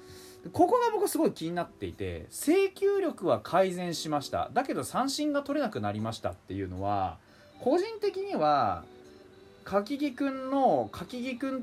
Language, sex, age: Japanese, male, 20-39